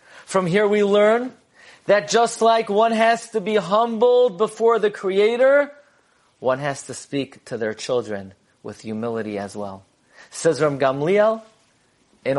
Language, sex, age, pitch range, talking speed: English, male, 40-59, 120-195 Hz, 145 wpm